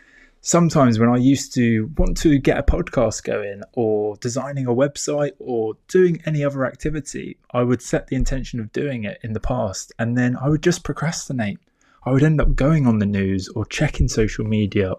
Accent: British